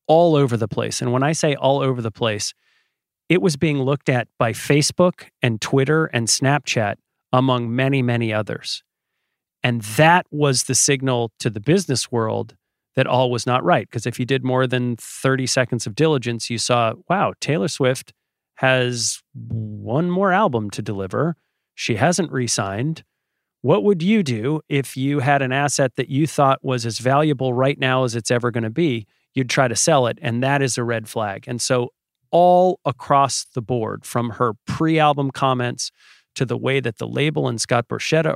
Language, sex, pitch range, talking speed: English, male, 120-150 Hz, 185 wpm